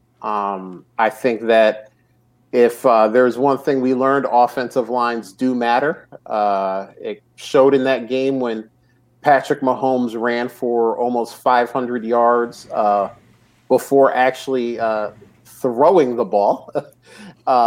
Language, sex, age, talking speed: English, male, 40-59, 125 wpm